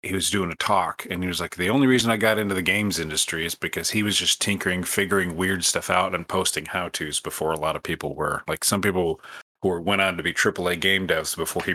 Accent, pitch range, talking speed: American, 85-100 Hz, 265 wpm